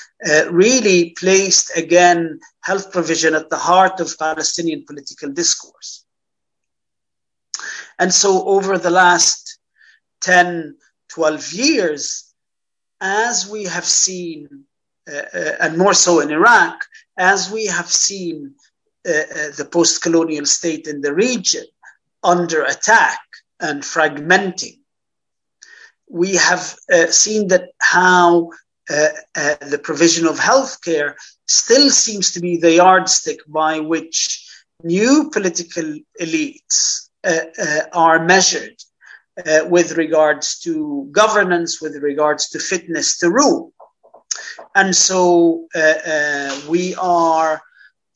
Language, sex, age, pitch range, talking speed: English, male, 50-69, 160-200 Hz, 115 wpm